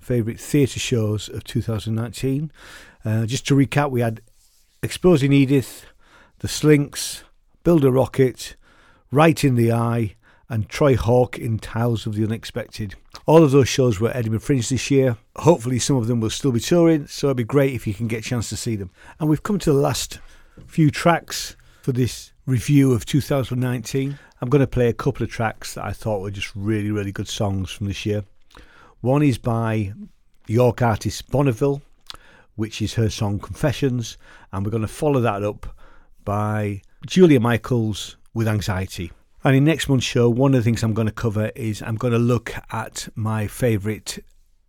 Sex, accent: male, British